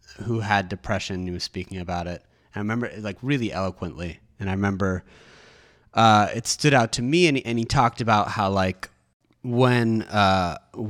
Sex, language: male, English